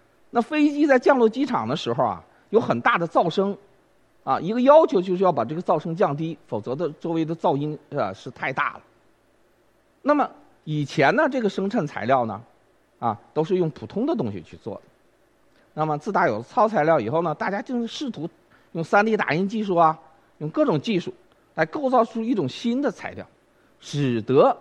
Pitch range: 145-220 Hz